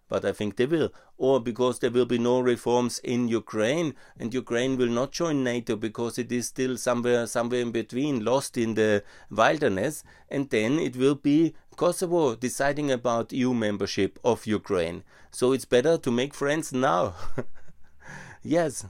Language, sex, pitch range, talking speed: German, male, 100-125 Hz, 165 wpm